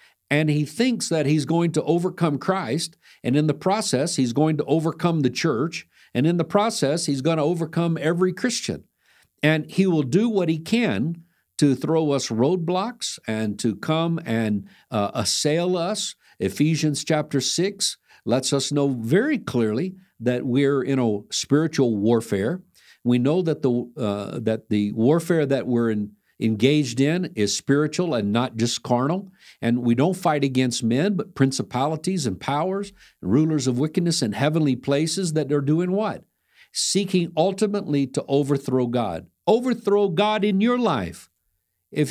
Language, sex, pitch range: English, male, 130-185 Hz